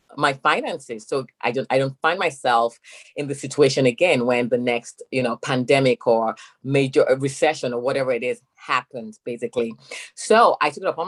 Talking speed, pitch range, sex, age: 180 wpm, 130-220 Hz, female, 30-49